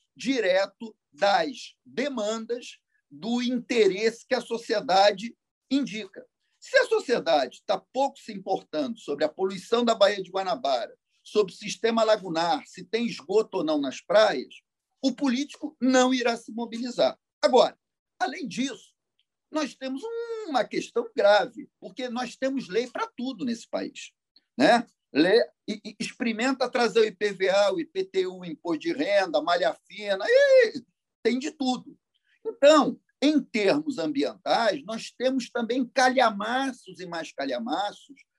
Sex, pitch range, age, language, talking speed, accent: male, 210-275 Hz, 50-69, Portuguese, 135 wpm, Brazilian